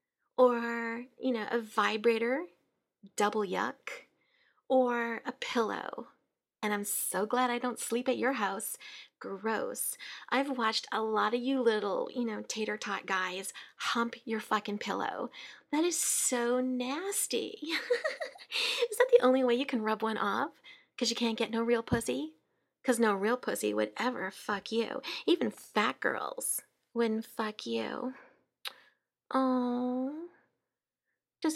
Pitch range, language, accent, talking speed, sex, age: 230-305 Hz, English, American, 140 wpm, female, 30-49